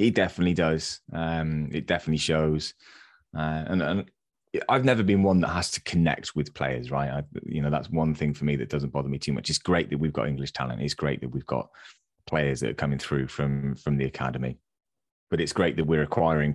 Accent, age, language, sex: British, 20-39, English, male